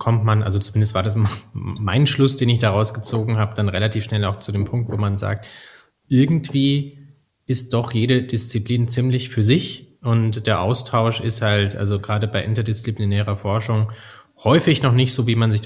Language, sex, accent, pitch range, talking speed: German, male, German, 105-125 Hz, 185 wpm